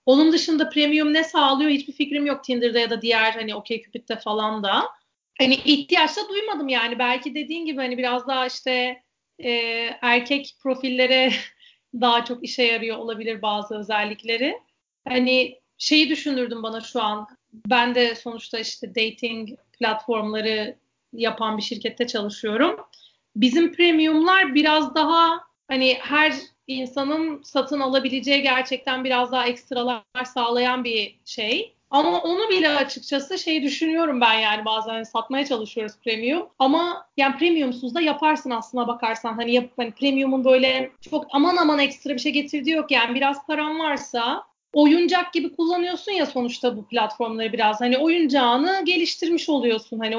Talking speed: 140 wpm